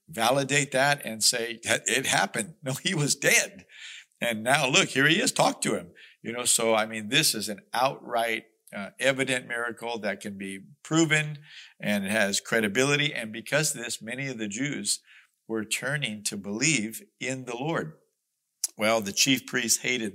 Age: 50-69